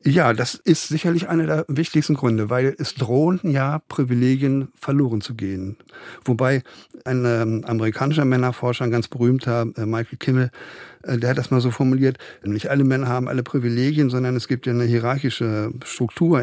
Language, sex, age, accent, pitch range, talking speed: German, male, 50-69, German, 120-145 Hz, 170 wpm